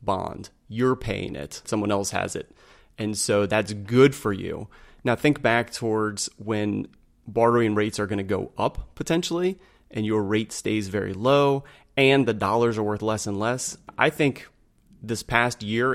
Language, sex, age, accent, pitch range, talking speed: English, male, 30-49, American, 100-120 Hz, 175 wpm